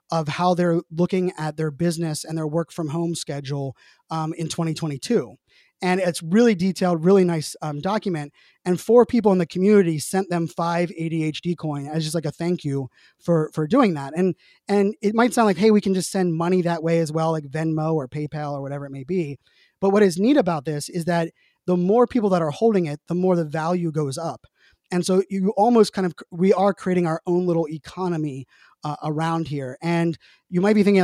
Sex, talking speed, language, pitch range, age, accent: male, 215 wpm, English, 160-190 Hz, 20-39, American